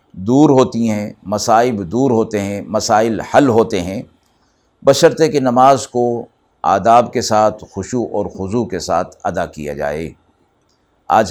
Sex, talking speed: male, 145 wpm